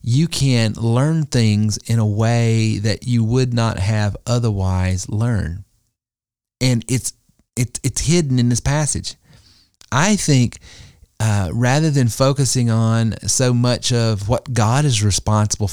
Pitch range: 100-125 Hz